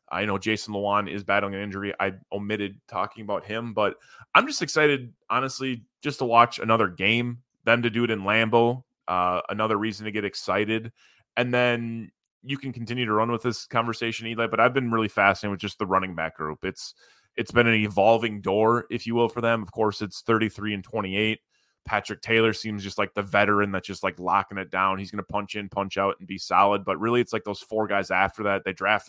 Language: English